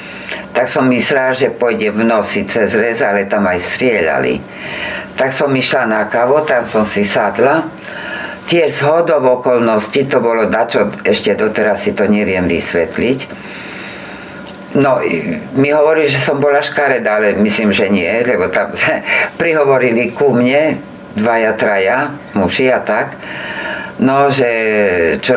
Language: Slovak